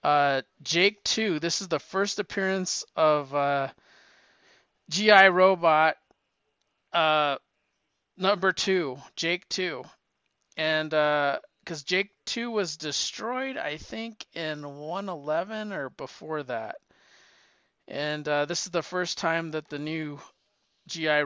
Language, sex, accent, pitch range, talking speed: English, male, American, 150-185 Hz, 120 wpm